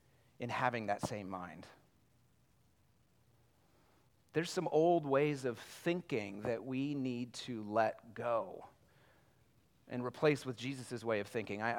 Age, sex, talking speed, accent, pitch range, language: 30-49, male, 125 wpm, American, 115-140 Hz, English